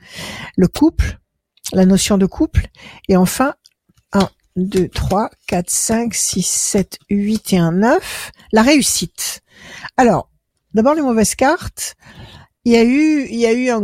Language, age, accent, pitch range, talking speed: French, 60-79, French, 195-235 Hz, 150 wpm